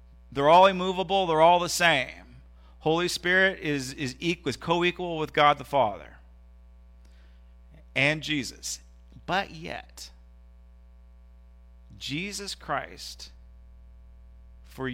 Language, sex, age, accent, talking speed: English, male, 40-59, American, 95 wpm